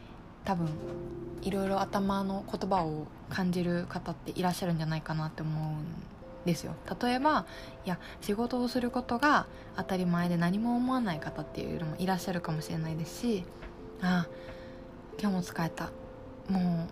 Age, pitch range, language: 20-39, 165-210 Hz, Japanese